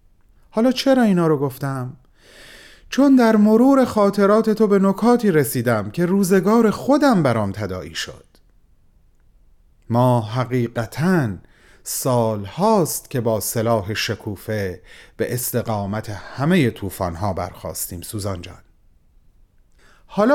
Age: 40-59